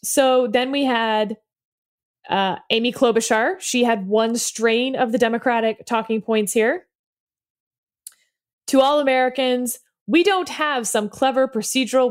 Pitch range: 210-280 Hz